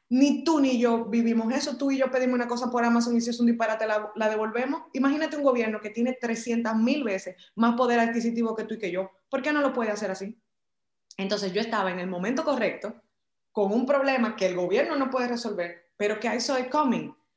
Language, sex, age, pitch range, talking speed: English, female, 20-39, 215-275 Hz, 230 wpm